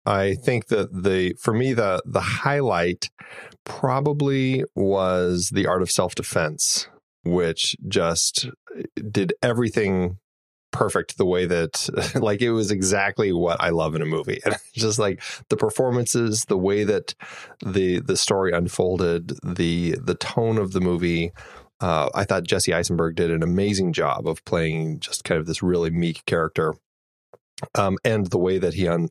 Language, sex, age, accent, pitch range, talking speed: English, male, 20-39, American, 85-100 Hz, 155 wpm